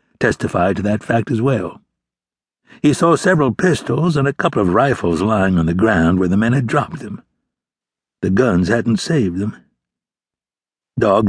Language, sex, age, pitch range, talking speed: English, male, 60-79, 100-135 Hz, 165 wpm